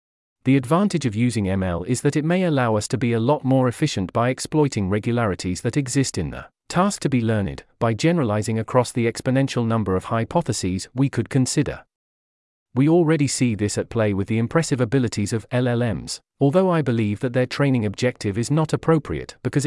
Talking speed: 190 wpm